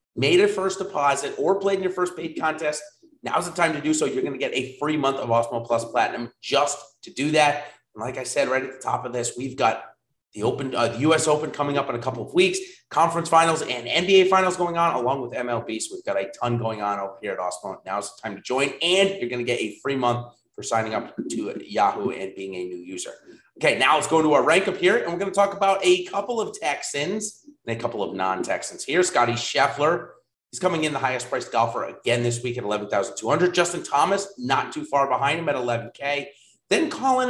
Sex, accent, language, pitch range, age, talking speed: male, American, English, 125-190 Hz, 30-49, 245 wpm